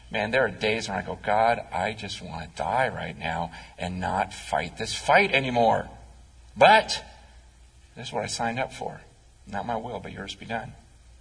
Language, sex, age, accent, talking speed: English, male, 40-59, American, 195 wpm